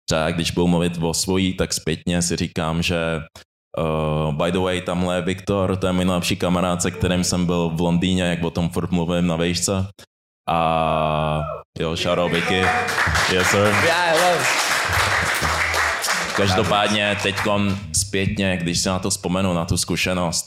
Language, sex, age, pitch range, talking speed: Czech, male, 20-39, 85-95 Hz, 145 wpm